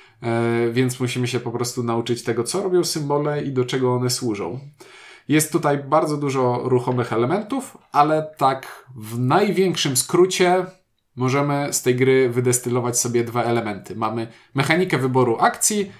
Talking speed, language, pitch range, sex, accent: 145 wpm, Polish, 120-170 Hz, male, native